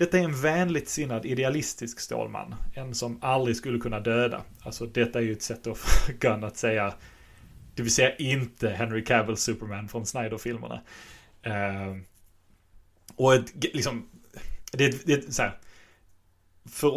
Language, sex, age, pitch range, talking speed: English, male, 30-49, 105-120 Hz, 145 wpm